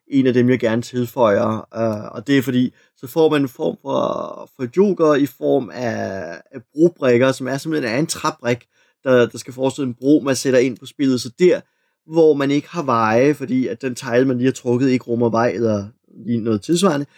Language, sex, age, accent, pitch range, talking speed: Danish, male, 30-49, native, 125-160 Hz, 215 wpm